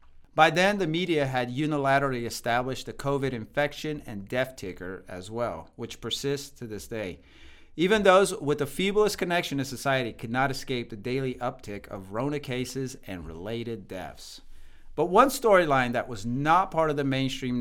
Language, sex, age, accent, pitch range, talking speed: English, male, 40-59, American, 110-145 Hz, 170 wpm